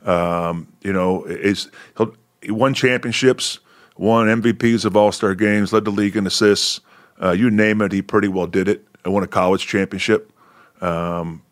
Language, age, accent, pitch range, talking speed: English, 30-49, American, 95-110 Hz, 165 wpm